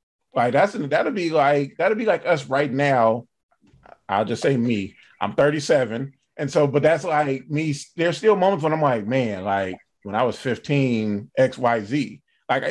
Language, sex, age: English, male, 30-49